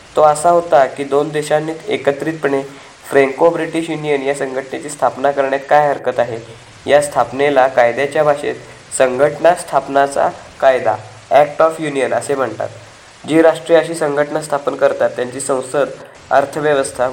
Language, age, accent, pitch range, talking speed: Marathi, 20-39, native, 135-150 Hz, 135 wpm